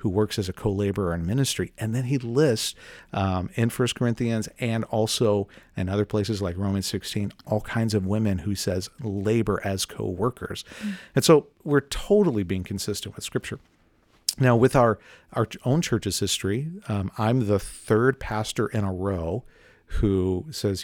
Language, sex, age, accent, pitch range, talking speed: English, male, 50-69, American, 95-115 Hz, 165 wpm